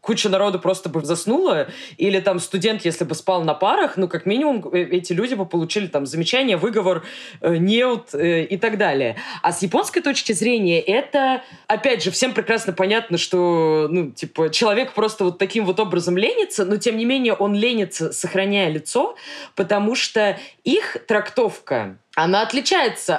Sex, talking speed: female, 160 wpm